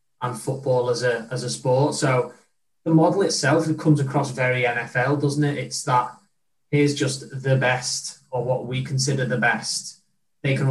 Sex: male